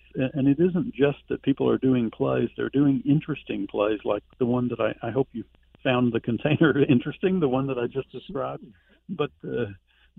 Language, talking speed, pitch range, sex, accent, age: English, 190 wpm, 115-135 Hz, male, American, 50-69